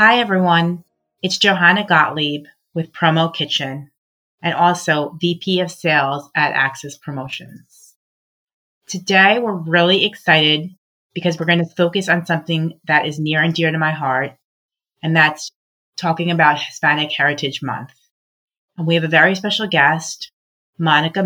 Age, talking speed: 30-49, 140 wpm